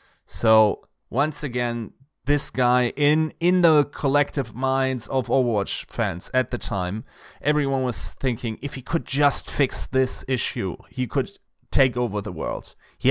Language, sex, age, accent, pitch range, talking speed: English, male, 20-39, German, 110-140 Hz, 150 wpm